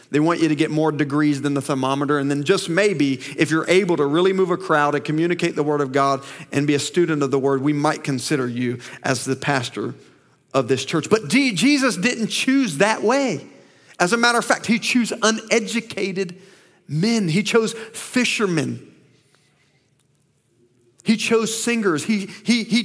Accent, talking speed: American, 185 wpm